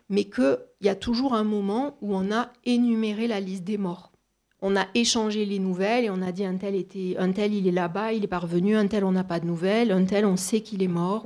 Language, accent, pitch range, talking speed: French, French, 195-235 Hz, 260 wpm